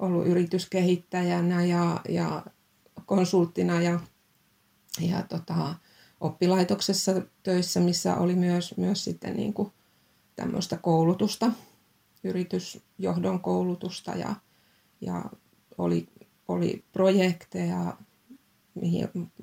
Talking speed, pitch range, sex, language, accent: 80 wpm, 170-190 Hz, female, Finnish, native